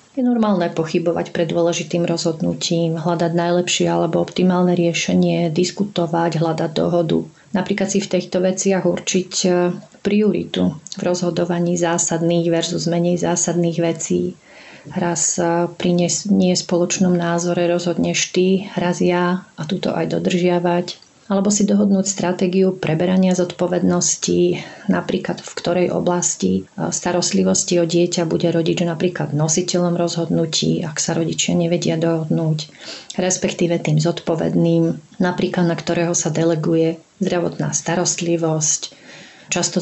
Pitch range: 165-180 Hz